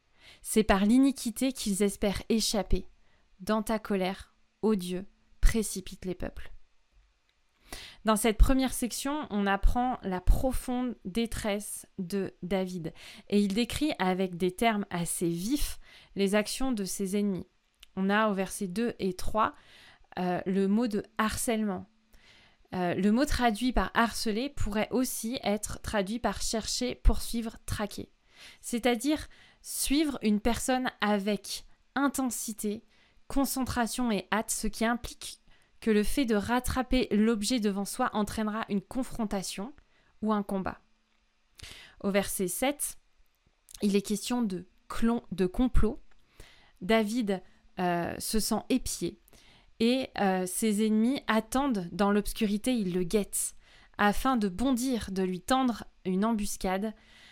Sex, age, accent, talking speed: female, 20-39, French, 130 wpm